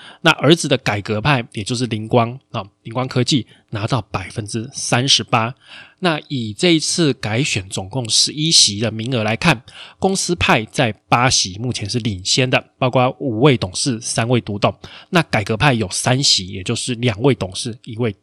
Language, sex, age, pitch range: Chinese, male, 20-39, 110-140 Hz